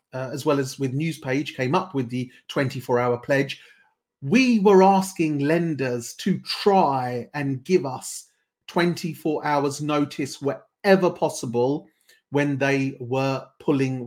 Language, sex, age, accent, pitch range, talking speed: English, male, 40-59, British, 135-170 Hz, 130 wpm